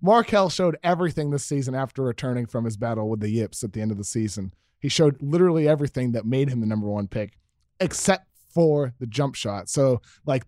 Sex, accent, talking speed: male, American, 210 wpm